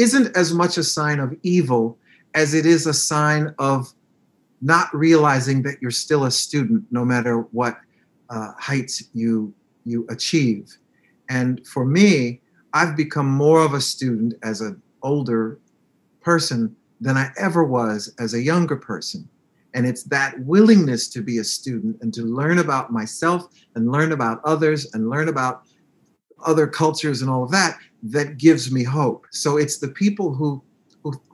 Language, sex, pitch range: English, male, 130-170 Hz